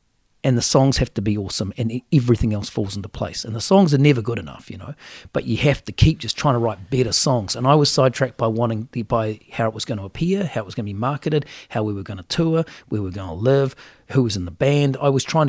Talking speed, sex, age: 285 wpm, male, 40-59